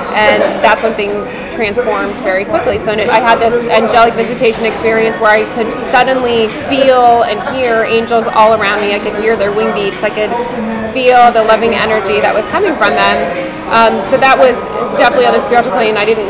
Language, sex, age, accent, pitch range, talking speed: English, female, 20-39, American, 205-230 Hz, 195 wpm